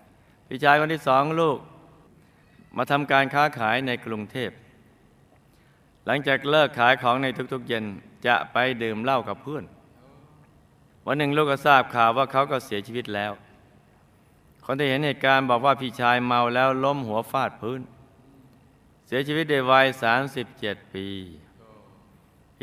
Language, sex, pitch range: Thai, male, 115-140 Hz